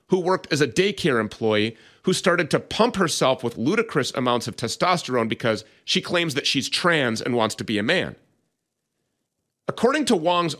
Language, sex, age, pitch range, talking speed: English, male, 30-49, 125-190 Hz, 175 wpm